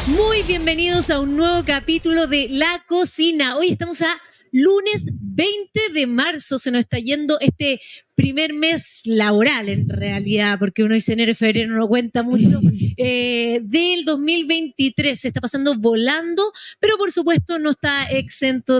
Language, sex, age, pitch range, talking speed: Spanish, female, 20-39, 250-320 Hz, 155 wpm